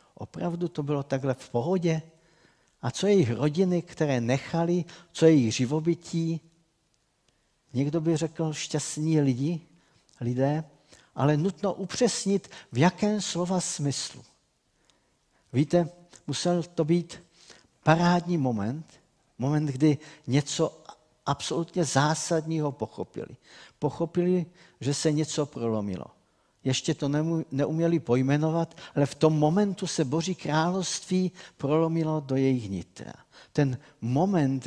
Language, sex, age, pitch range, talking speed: Czech, male, 50-69, 135-175 Hz, 105 wpm